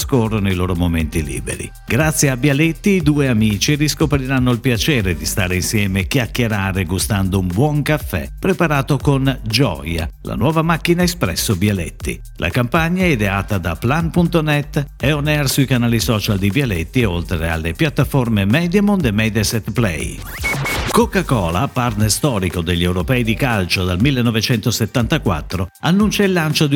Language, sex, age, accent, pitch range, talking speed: Italian, male, 50-69, native, 95-145 Hz, 145 wpm